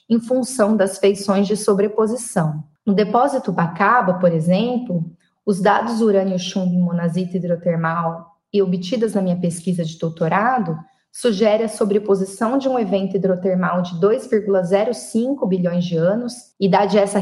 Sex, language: female, Portuguese